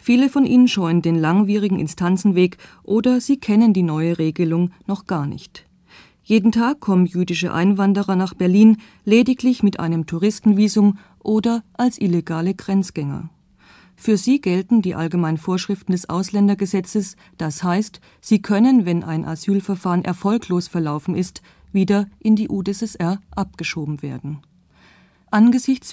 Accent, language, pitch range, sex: German, German, 175-210 Hz, female